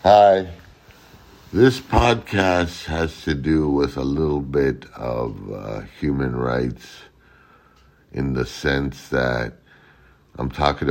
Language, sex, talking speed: English, male, 110 wpm